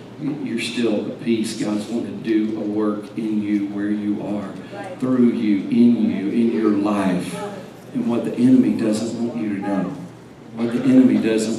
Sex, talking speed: male, 180 wpm